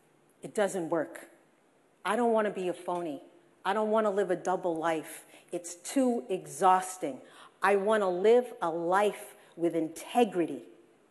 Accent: American